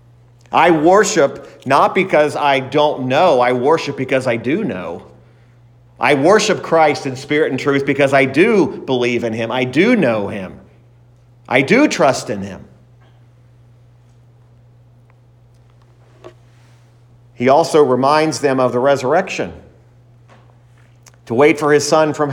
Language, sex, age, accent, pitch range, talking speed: English, male, 50-69, American, 120-170 Hz, 130 wpm